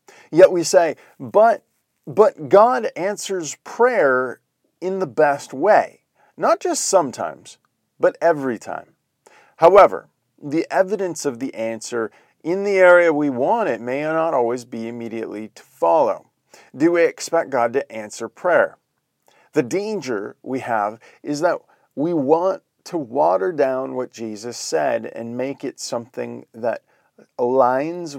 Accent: American